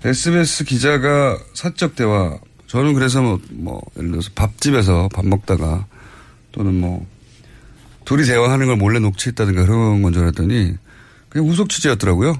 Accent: native